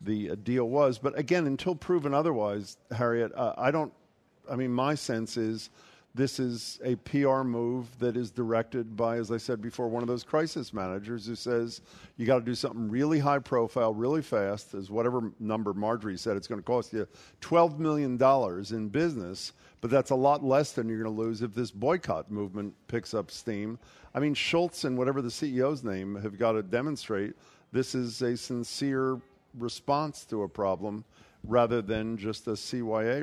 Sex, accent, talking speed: male, American, 185 wpm